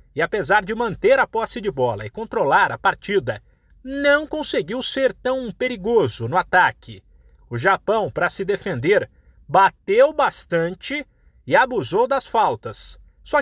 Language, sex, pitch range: Portuguese, male, 190-290 Hz